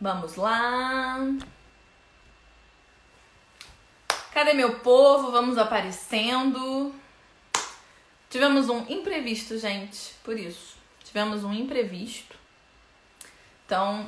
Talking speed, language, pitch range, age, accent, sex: 70 wpm, Portuguese, 225-290 Hz, 20-39, Brazilian, female